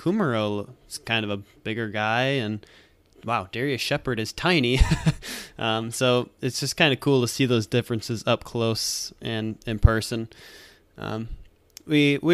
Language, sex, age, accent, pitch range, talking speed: English, male, 20-39, American, 110-130 Hz, 150 wpm